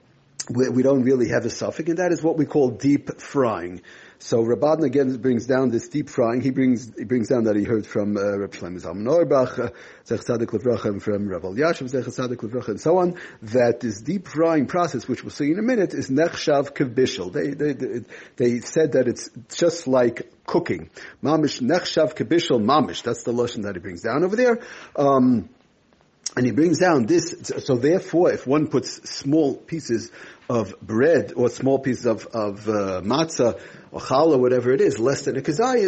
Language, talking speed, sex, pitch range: English, 190 wpm, male, 115-150 Hz